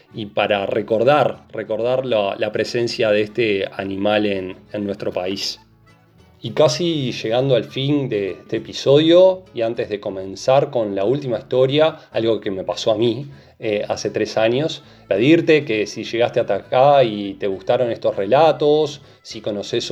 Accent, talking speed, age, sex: Argentinian, 160 wpm, 20-39, male